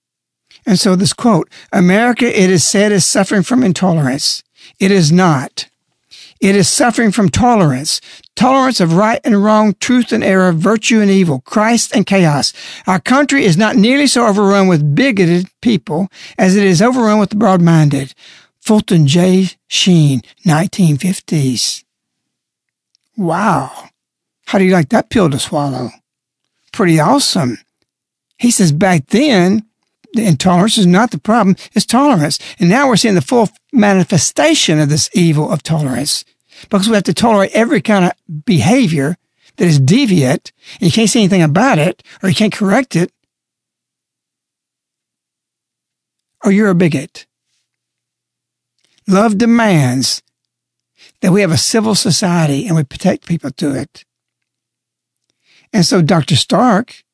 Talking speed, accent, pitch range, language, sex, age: 145 wpm, American, 165-215 Hz, English, male, 60-79